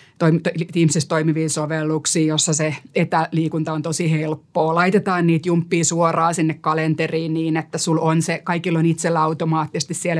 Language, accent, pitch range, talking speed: Finnish, native, 160-180 Hz, 145 wpm